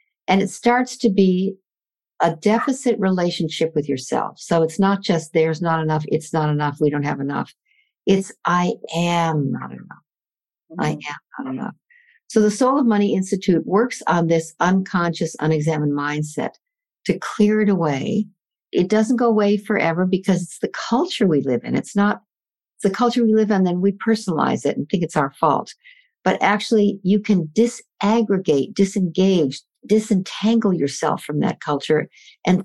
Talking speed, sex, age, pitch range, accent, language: 165 wpm, female, 60-79, 155-210 Hz, American, English